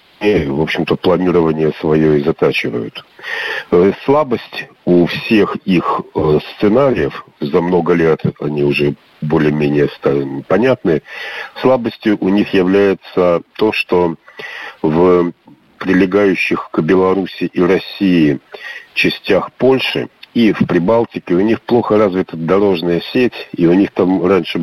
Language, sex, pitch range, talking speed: Russian, male, 80-100 Hz, 115 wpm